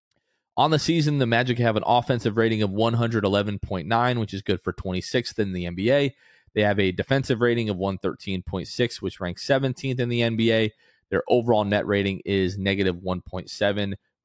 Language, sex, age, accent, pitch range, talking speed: English, male, 30-49, American, 100-120 Hz, 165 wpm